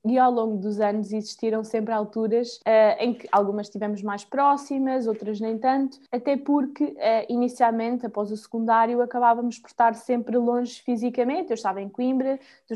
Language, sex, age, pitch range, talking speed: Portuguese, female, 20-39, 210-250 Hz, 170 wpm